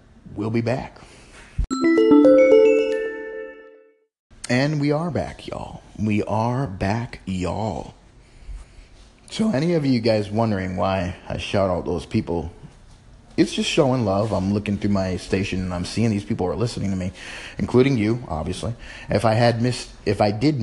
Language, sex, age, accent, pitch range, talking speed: English, male, 30-49, American, 95-120 Hz, 150 wpm